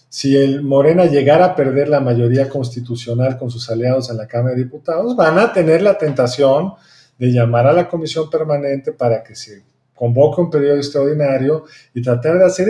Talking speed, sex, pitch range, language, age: 185 wpm, male, 130-180 Hz, Spanish, 40-59